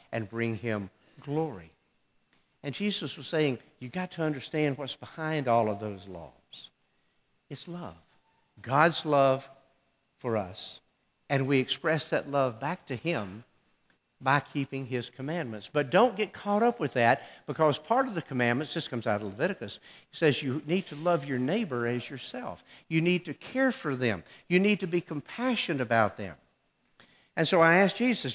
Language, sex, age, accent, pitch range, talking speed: English, male, 60-79, American, 130-180 Hz, 170 wpm